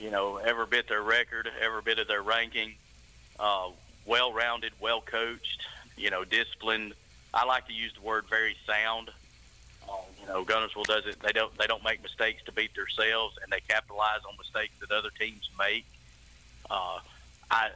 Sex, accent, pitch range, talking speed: male, American, 100-115 Hz, 170 wpm